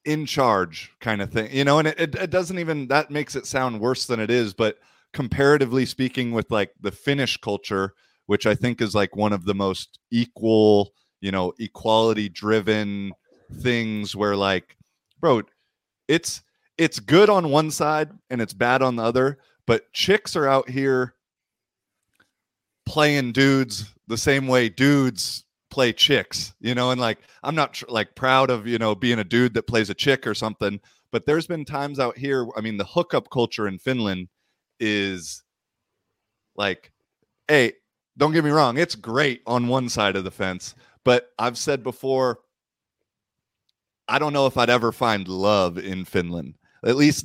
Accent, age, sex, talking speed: American, 30-49, male, 170 wpm